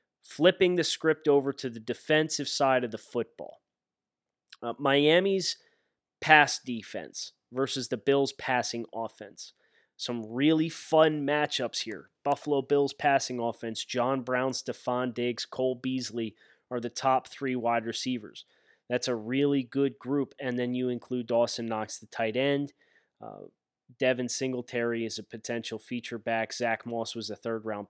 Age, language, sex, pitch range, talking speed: 20-39, English, male, 115-140 Hz, 145 wpm